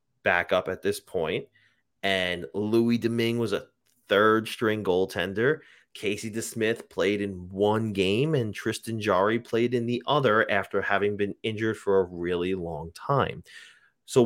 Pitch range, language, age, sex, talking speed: 95-135 Hz, English, 30-49, male, 155 wpm